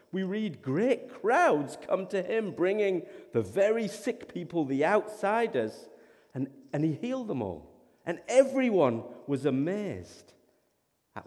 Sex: male